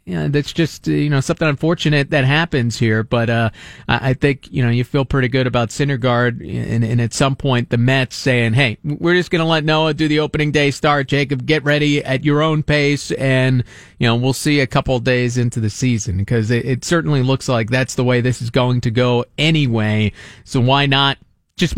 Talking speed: 220 wpm